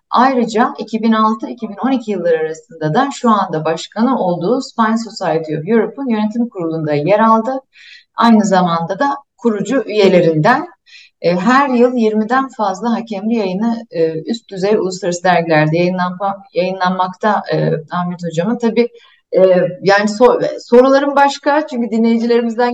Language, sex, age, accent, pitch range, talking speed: Turkish, female, 30-49, native, 185-245 Hz, 115 wpm